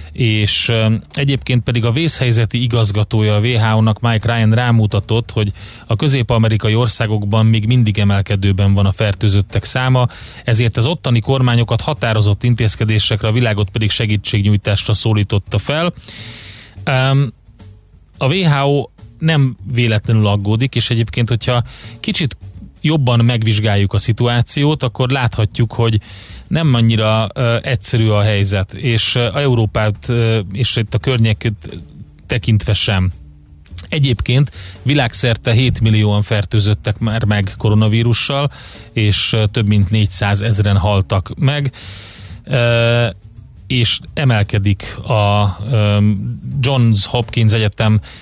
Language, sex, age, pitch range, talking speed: Hungarian, male, 30-49, 105-120 Hz, 110 wpm